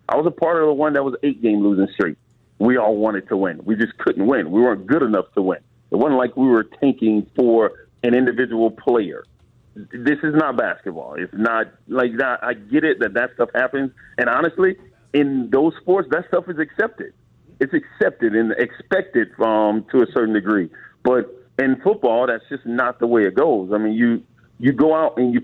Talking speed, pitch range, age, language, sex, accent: 210 wpm, 115-145 Hz, 40-59, English, male, American